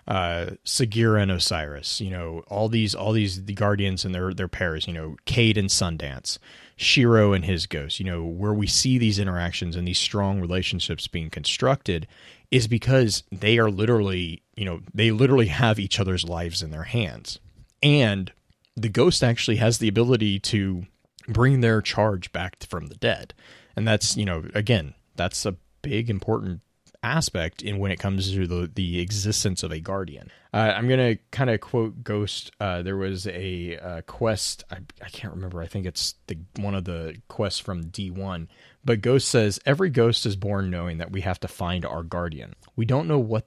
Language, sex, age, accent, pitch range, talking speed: English, male, 30-49, American, 90-110 Hz, 190 wpm